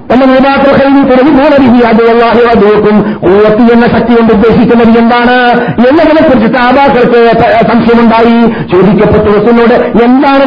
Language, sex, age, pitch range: Malayalam, male, 50-69, 225-250 Hz